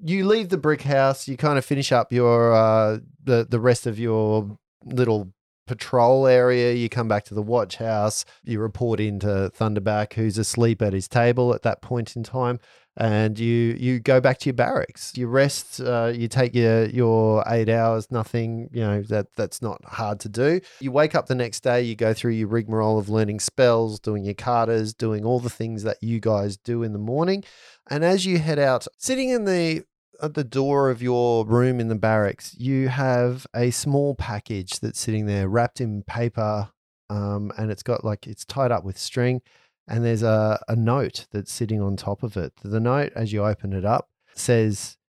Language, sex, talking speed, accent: English, male, 200 wpm, Australian